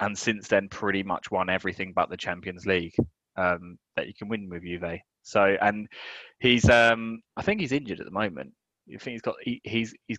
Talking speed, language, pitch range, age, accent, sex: 210 wpm, English, 95-110 Hz, 20-39, British, male